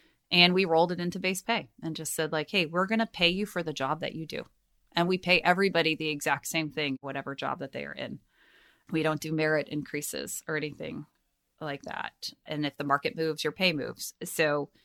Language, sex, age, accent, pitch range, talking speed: English, female, 30-49, American, 150-180 Hz, 220 wpm